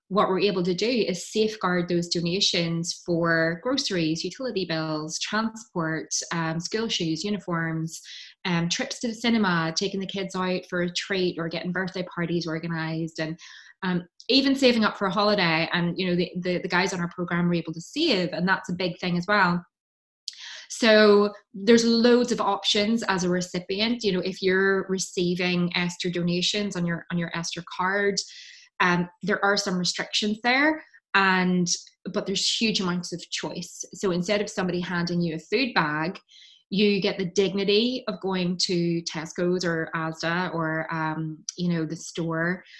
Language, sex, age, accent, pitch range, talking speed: English, female, 20-39, British, 170-200 Hz, 170 wpm